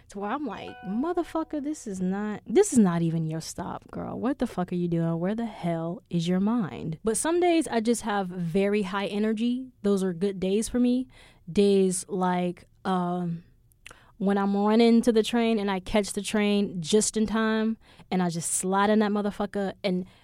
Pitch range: 185-235 Hz